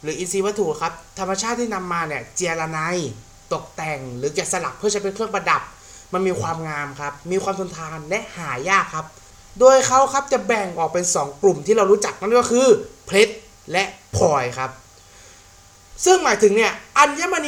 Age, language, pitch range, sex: 30-49, Thai, 155-230 Hz, male